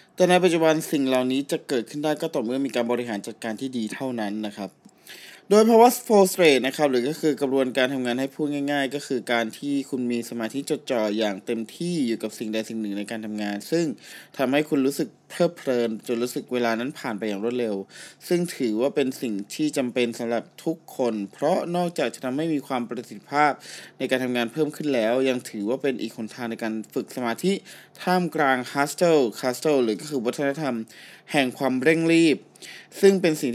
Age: 20-39